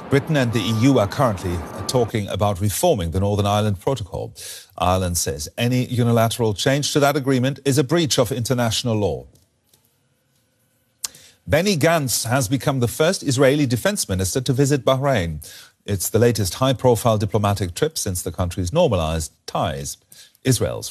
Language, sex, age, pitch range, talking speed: English, male, 40-59, 95-130 Hz, 145 wpm